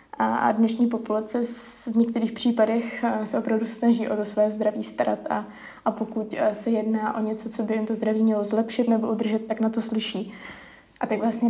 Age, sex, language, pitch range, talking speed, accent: 20-39, female, Czech, 220-245 Hz, 195 wpm, native